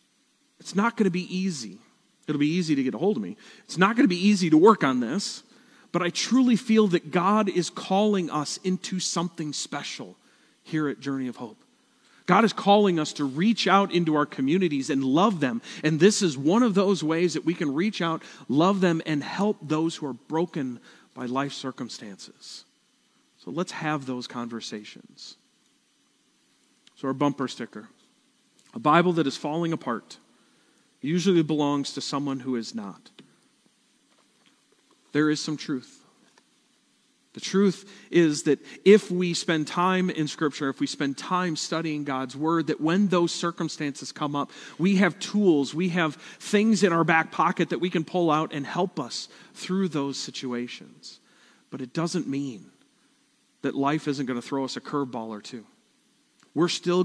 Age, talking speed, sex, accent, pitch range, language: 40-59, 175 wpm, male, American, 145-205 Hz, English